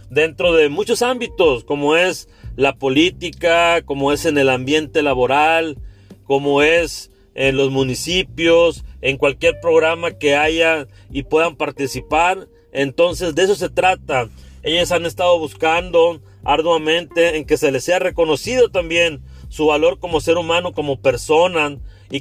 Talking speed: 140 wpm